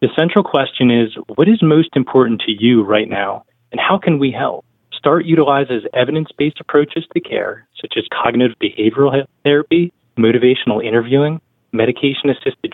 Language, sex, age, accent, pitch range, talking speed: English, male, 20-39, American, 115-150 Hz, 145 wpm